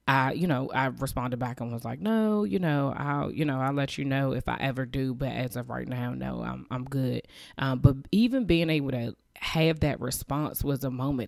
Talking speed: 230 wpm